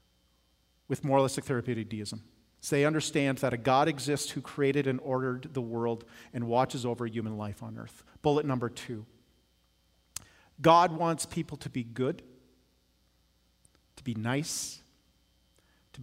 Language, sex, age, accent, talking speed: English, male, 40-59, American, 140 wpm